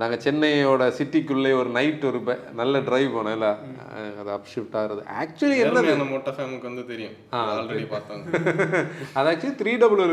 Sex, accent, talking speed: male, native, 90 wpm